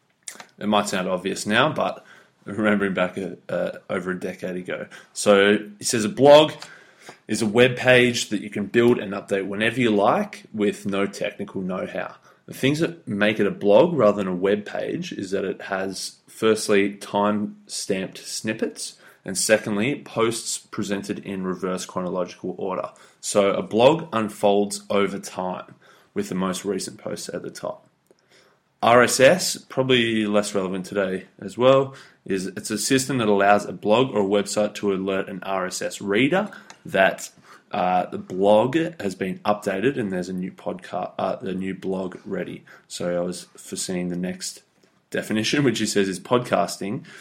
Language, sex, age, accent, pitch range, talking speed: English, male, 20-39, Australian, 95-110 Hz, 165 wpm